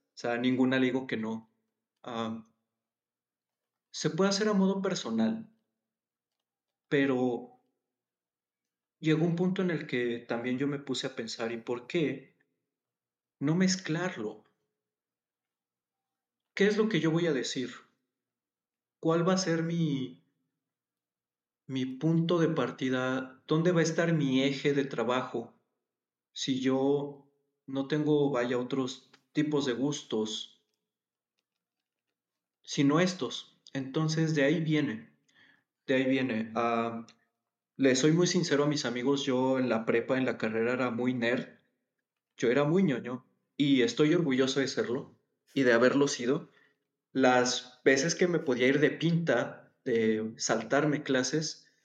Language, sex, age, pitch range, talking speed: Spanish, male, 40-59, 115-155 Hz, 135 wpm